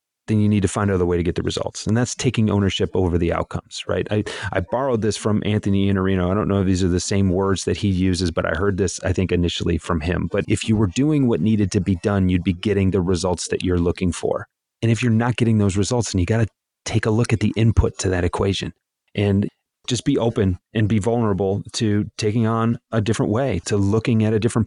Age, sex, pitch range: 30-49, male, 100-125 Hz